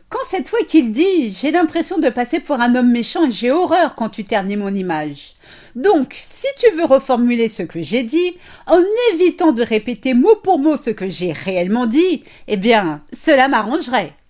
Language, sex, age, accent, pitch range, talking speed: French, female, 50-69, French, 205-310 Hz, 195 wpm